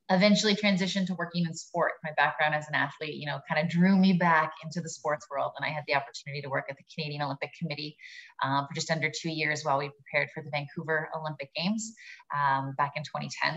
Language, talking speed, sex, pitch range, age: English, 230 wpm, female, 145-165 Hz, 20-39